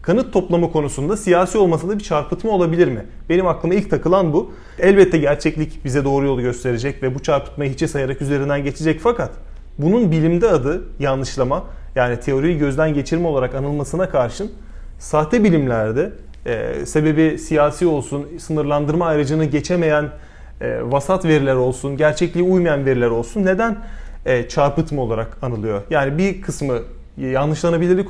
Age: 30-49